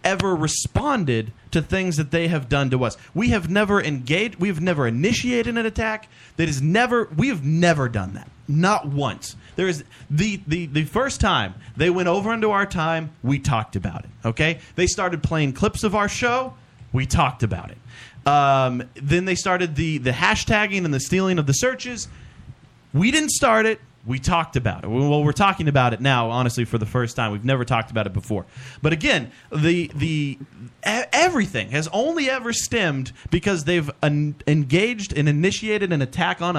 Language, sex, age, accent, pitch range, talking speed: English, male, 30-49, American, 135-195 Hz, 185 wpm